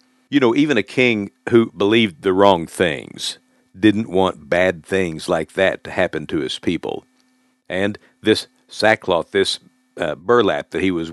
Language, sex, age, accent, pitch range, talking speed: English, male, 60-79, American, 95-140 Hz, 160 wpm